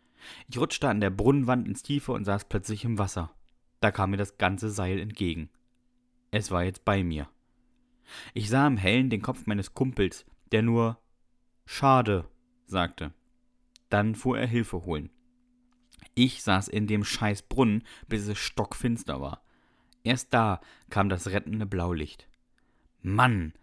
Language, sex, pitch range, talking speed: German, male, 90-125 Hz, 145 wpm